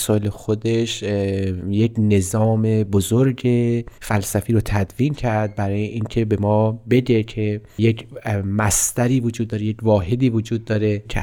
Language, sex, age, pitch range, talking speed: Persian, male, 30-49, 100-115 Hz, 130 wpm